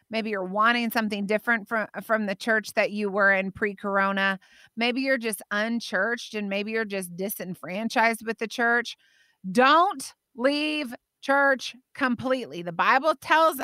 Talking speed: 145 wpm